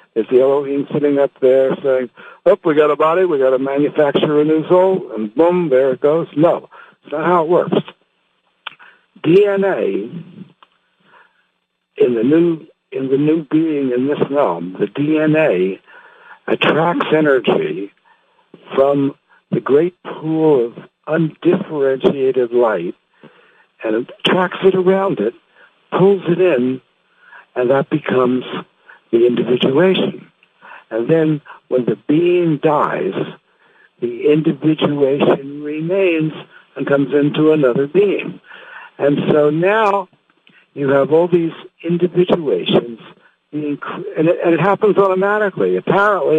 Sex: male